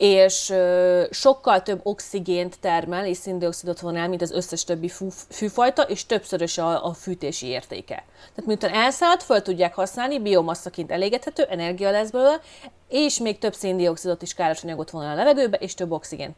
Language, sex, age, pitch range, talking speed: Hungarian, female, 30-49, 170-230 Hz, 160 wpm